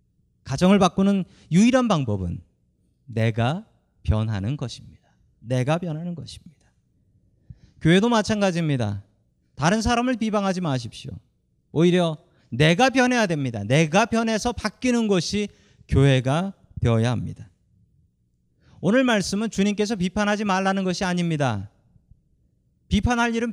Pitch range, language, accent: 120-195 Hz, Korean, native